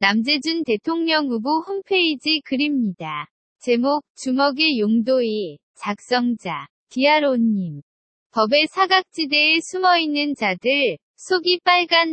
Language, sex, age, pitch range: Korean, female, 20-39, 230-310 Hz